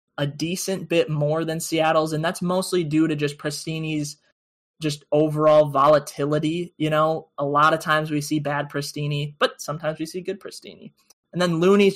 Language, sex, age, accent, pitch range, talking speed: English, male, 20-39, American, 145-160 Hz, 175 wpm